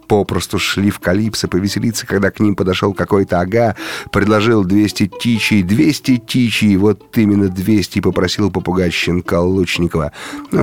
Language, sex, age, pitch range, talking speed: Russian, male, 30-49, 90-110 Hz, 130 wpm